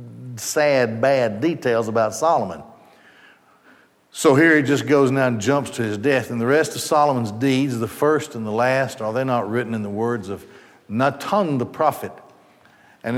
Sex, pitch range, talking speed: male, 110-140 Hz, 180 wpm